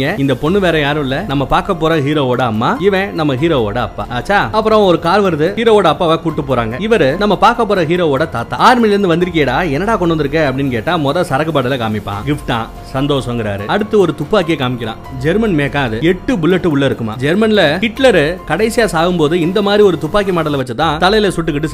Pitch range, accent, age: 130-175 Hz, native, 30-49